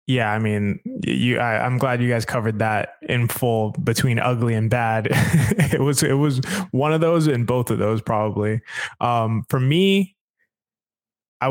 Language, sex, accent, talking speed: English, male, American, 170 wpm